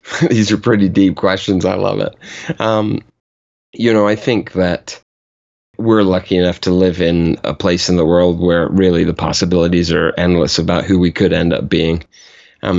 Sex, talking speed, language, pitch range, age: male, 185 wpm, English, 90-100 Hz, 30-49